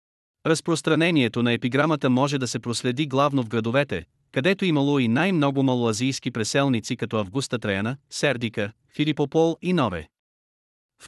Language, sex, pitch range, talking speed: Bulgarian, male, 125-155 Hz, 130 wpm